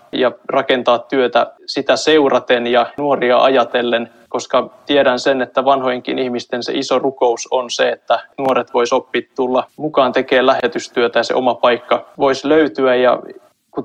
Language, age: Finnish, 20-39